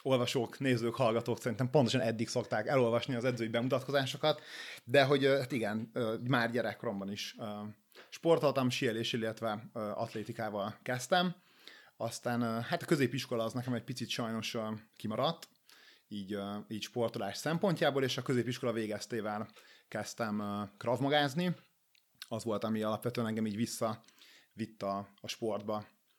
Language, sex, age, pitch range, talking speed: Hungarian, male, 30-49, 110-135 Hz, 120 wpm